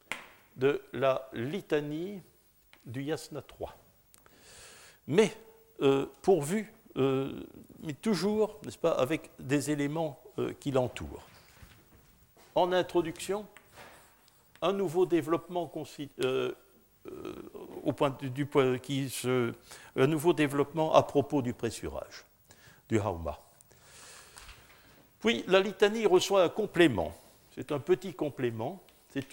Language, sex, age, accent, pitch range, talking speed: French, male, 60-79, French, 130-180 Hz, 85 wpm